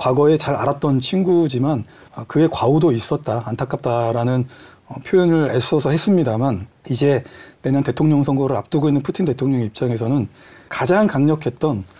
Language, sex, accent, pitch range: Korean, male, native, 120-150 Hz